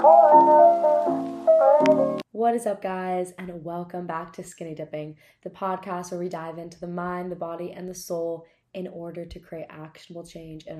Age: 20-39